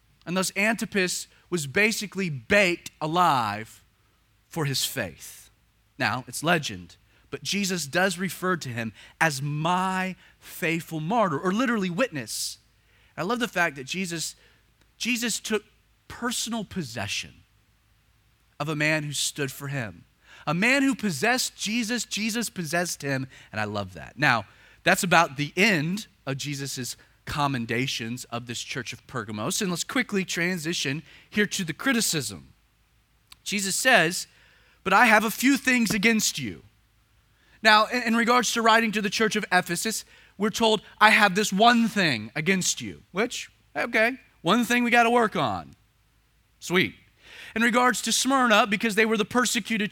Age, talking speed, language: 30-49, 150 wpm, English